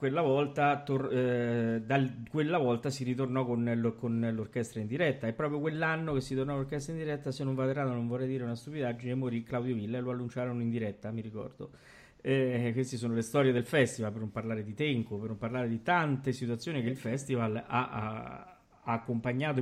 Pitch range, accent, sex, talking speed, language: 120-135 Hz, native, male, 210 wpm, Italian